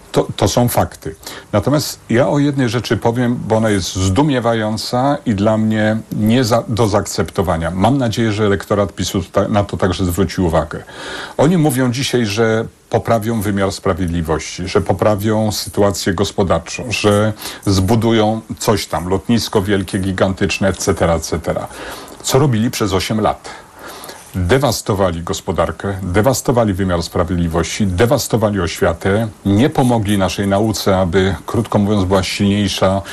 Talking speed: 130 wpm